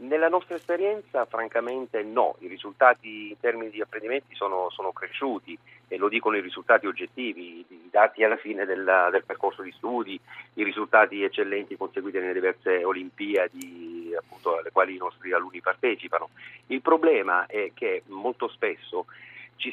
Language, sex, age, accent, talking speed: Italian, male, 40-59, native, 150 wpm